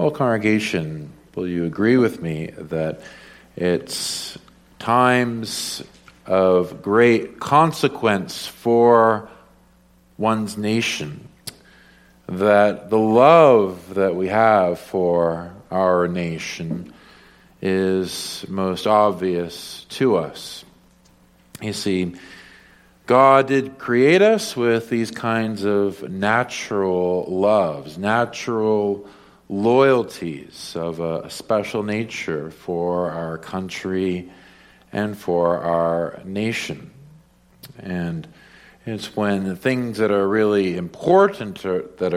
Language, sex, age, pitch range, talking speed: English, male, 50-69, 85-110 Hz, 95 wpm